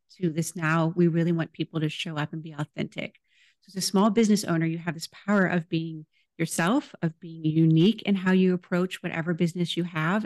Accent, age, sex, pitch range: American, 30-49, female, 165-195 Hz